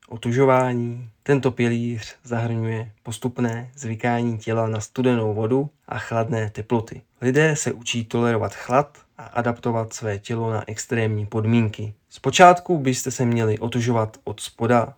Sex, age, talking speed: male, 20-39, 130 wpm